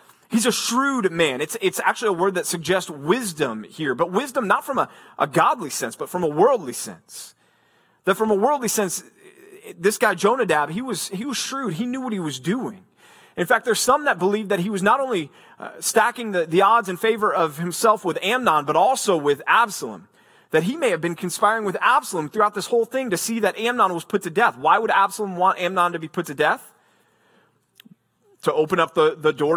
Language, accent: English, American